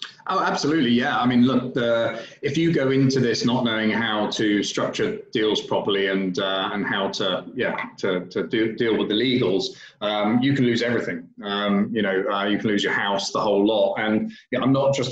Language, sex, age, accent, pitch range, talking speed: English, male, 30-49, British, 105-125 Hz, 220 wpm